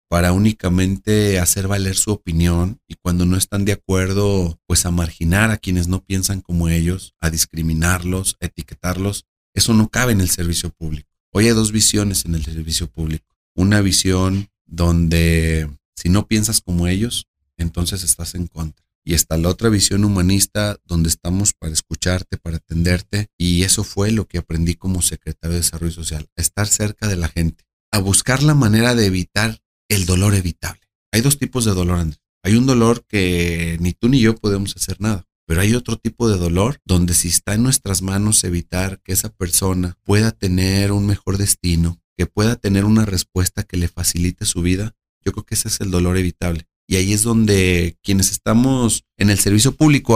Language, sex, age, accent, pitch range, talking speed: Spanish, male, 40-59, Mexican, 85-105 Hz, 185 wpm